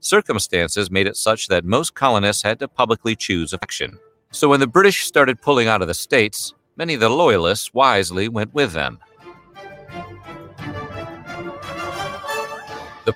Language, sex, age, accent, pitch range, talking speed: English, male, 50-69, American, 95-125 Hz, 145 wpm